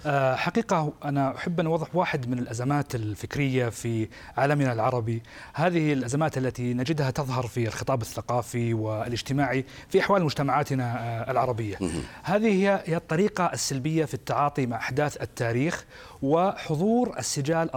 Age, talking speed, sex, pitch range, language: 30-49, 120 wpm, male, 130-170 Hz, Arabic